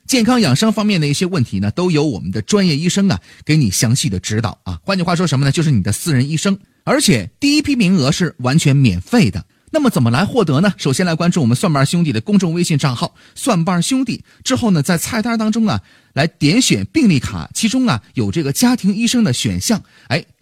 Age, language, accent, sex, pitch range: 30-49, Chinese, native, male, 120-195 Hz